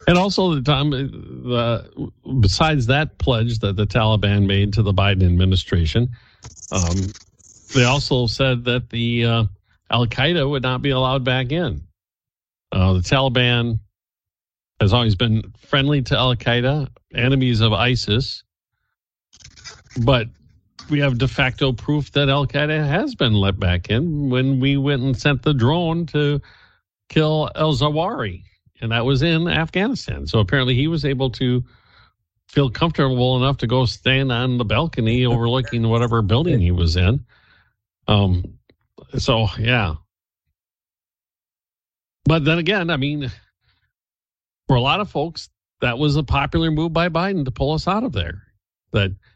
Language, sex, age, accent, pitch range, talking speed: English, male, 50-69, American, 105-140 Hz, 140 wpm